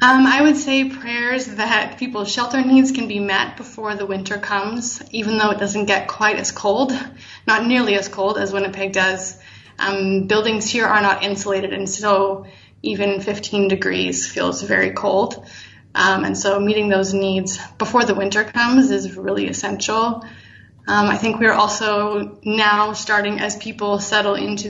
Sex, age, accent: female, 20-39, American